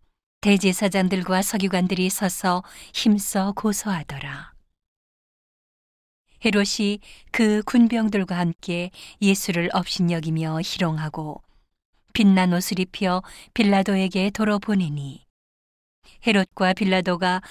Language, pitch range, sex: Korean, 175-205 Hz, female